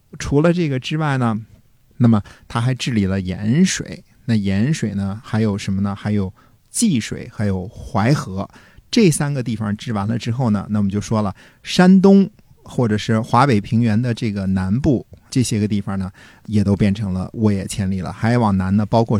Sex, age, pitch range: male, 50-69, 105-130 Hz